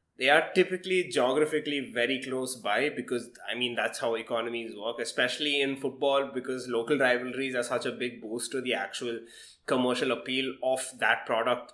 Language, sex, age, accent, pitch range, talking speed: English, male, 20-39, Indian, 130-170 Hz, 170 wpm